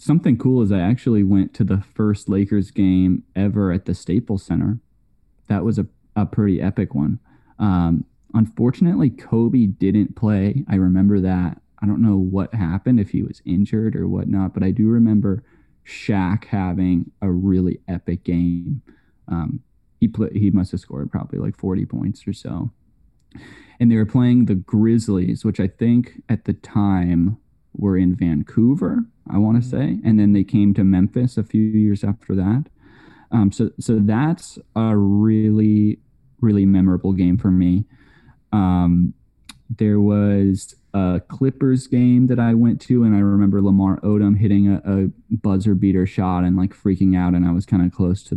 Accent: American